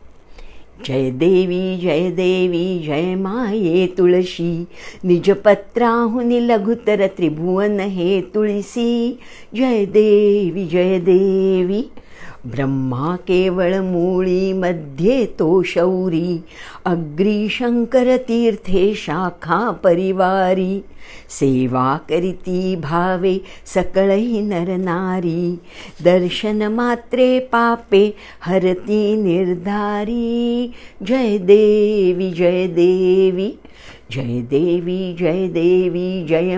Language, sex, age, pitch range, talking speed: English, female, 60-79, 180-215 Hz, 80 wpm